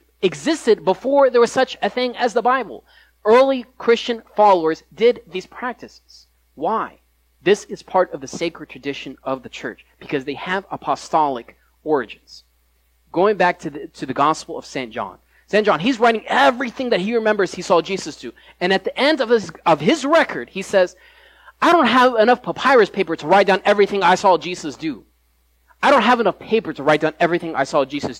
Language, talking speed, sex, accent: English, 195 wpm, male, American